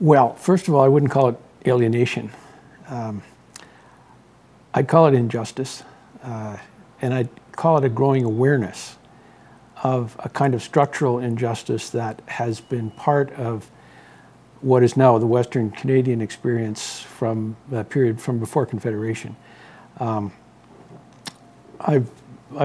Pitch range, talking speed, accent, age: 115-130 Hz, 125 wpm, American, 60-79